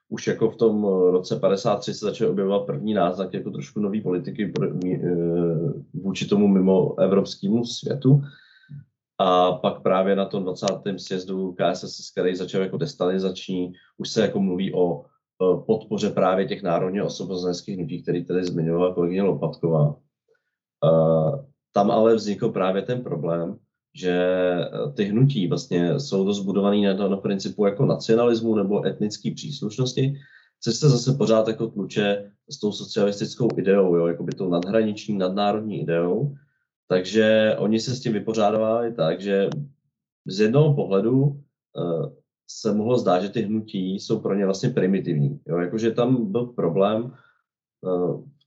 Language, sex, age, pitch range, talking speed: Czech, male, 20-39, 90-120 Hz, 140 wpm